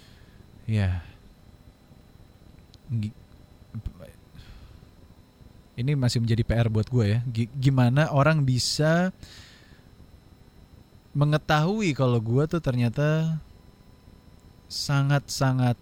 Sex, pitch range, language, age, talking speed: male, 110-150 Hz, English, 20-39, 70 wpm